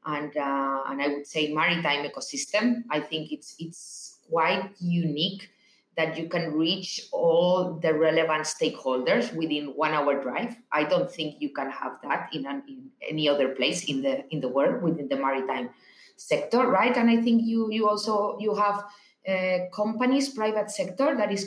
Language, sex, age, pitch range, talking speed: English, female, 30-49, 150-220 Hz, 175 wpm